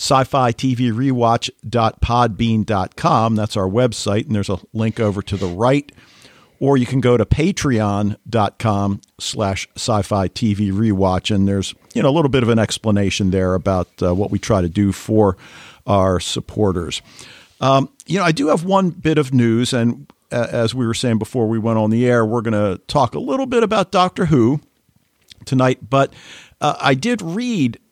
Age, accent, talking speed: 50-69, American, 165 wpm